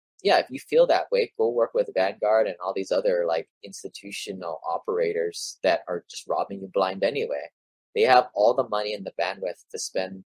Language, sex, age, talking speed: English, male, 20-39, 200 wpm